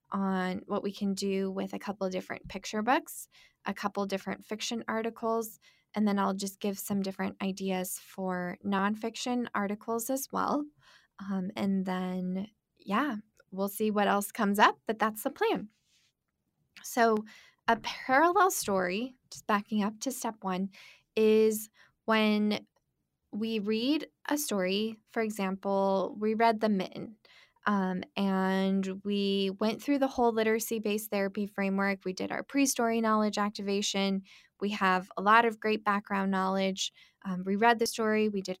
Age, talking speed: 10-29, 150 wpm